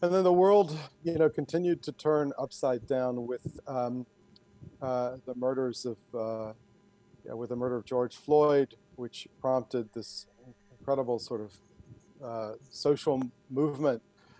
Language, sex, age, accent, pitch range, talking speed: English, male, 40-59, American, 115-140 Hz, 140 wpm